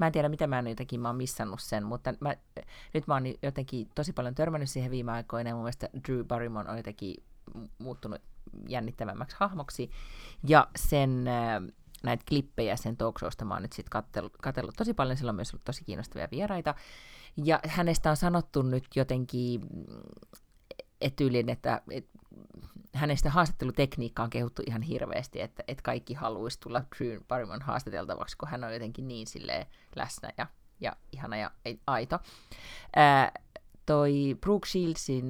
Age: 30-49